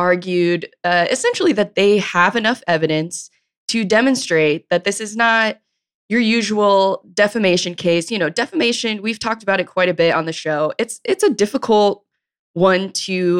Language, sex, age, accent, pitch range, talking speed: English, female, 20-39, American, 165-220 Hz, 165 wpm